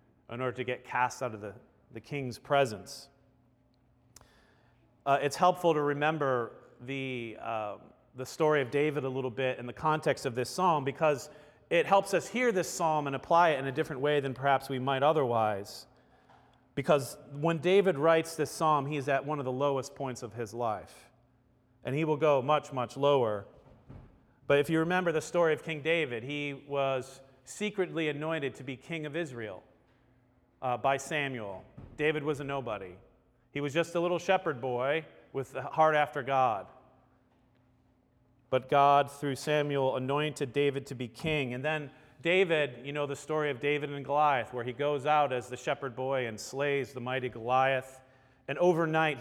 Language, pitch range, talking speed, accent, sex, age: English, 125-155 Hz, 175 wpm, American, male, 40-59